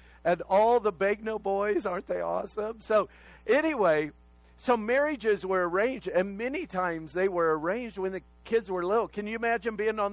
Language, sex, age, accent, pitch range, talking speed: English, male, 50-69, American, 160-220 Hz, 180 wpm